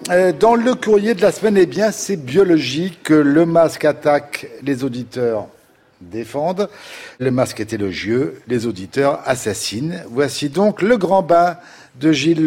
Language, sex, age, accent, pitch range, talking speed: French, male, 50-69, French, 130-180 Hz, 145 wpm